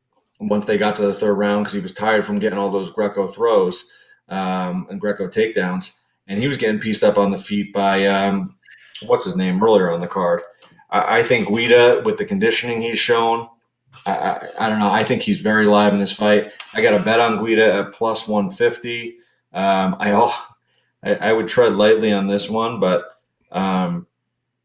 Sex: male